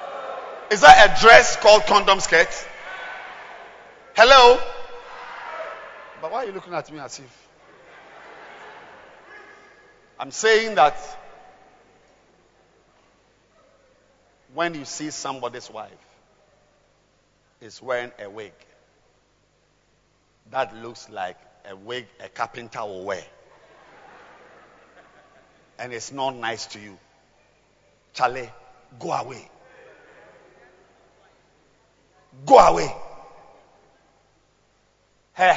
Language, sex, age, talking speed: English, male, 50-69, 85 wpm